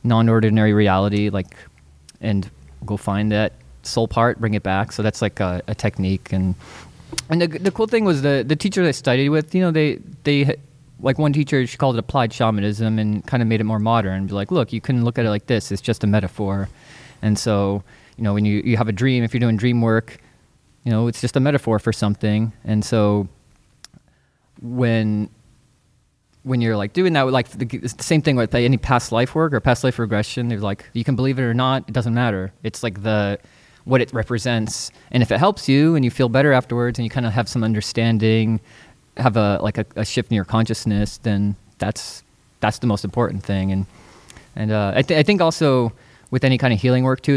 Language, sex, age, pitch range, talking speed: English, male, 20-39, 105-125 Hz, 220 wpm